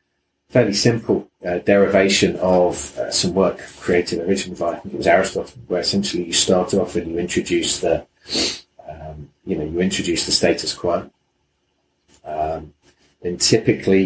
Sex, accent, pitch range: male, British, 80-100 Hz